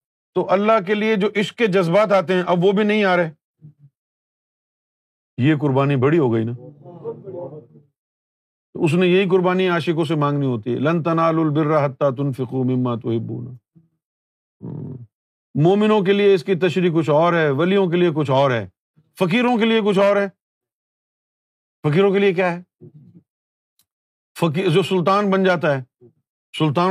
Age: 50-69